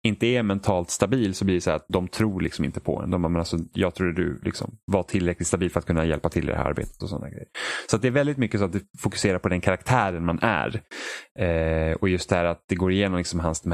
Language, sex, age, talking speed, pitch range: Swedish, male, 30-49, 275 wpm, 85-105 Hz